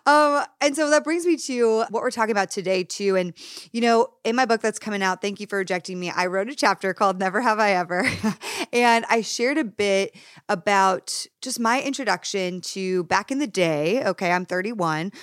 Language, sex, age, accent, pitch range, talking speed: English, female, 20-39, American, 185-230 Hz, 210 wpm